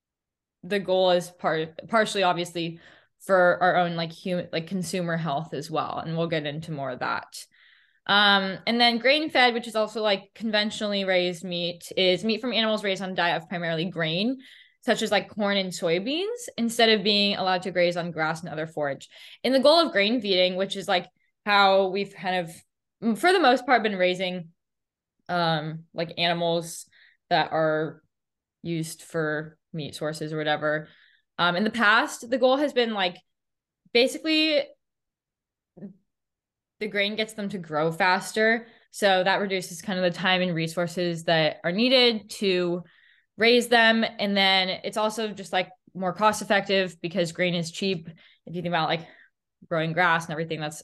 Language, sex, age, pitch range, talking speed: English, female, 10-29, 170-215 Hz, 175 wpm